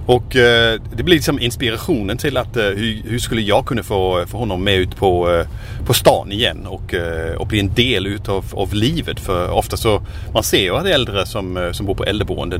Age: 30-49